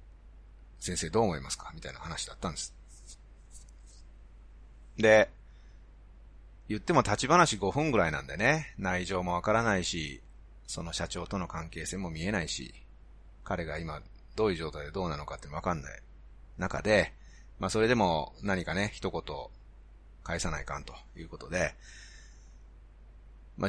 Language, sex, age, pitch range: Japanese, male, 30-49, 80-110 Hz